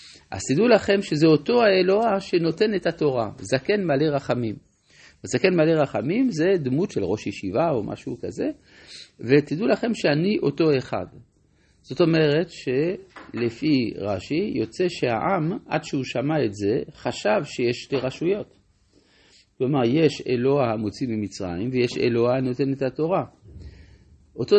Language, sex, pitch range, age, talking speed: Hebrew, male, 115-160 Hz, 50-69, 130 wpm